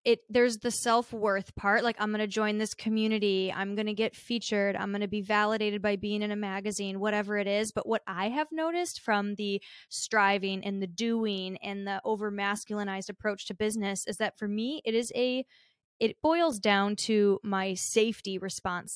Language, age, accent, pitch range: English, 20-39, American, 200-225 Hz